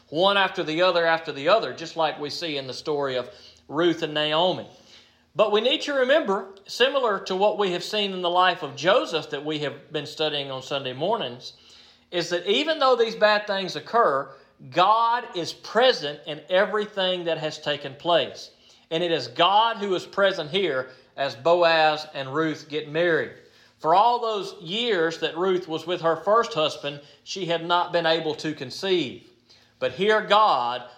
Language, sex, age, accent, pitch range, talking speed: English, male, 40-59, American, 150-180 Hz, 180 wpm